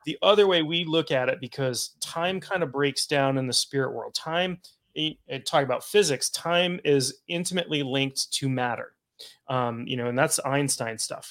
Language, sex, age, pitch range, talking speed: English, male, 30-49, 125-155 Hz, 180 wpm